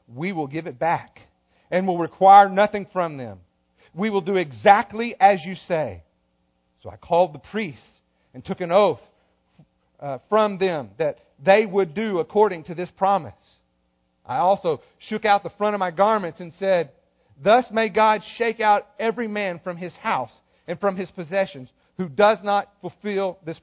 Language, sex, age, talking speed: English, male, 40-59, 175 wpm